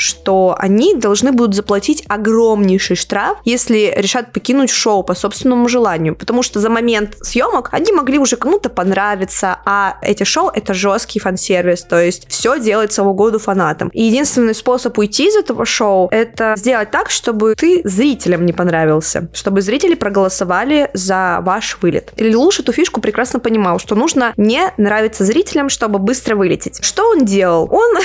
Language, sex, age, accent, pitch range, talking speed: Russian, female, 20-39, native, 200-265 Hz, 160 wpm